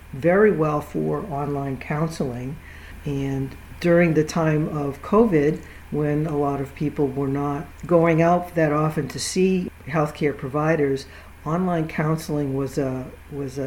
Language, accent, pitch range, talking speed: English, American, 140-165 Hz, 135 wpm